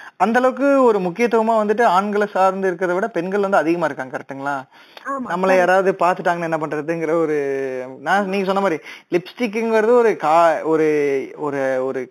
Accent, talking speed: native, 105 wpm